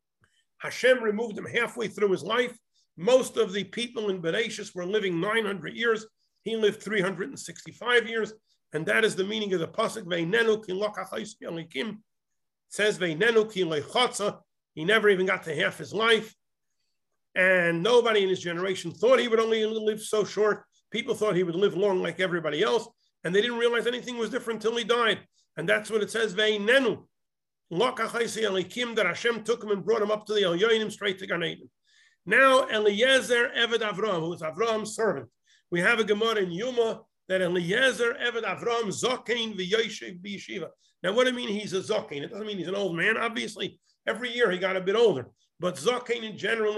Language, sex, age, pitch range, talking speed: English, male, 50-69, 185-230 Hz, 175 wpm